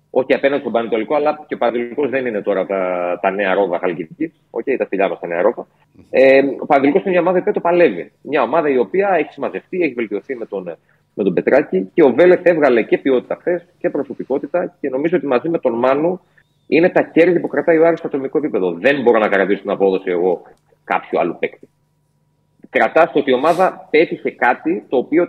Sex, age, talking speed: male, 30-49, 220 wpm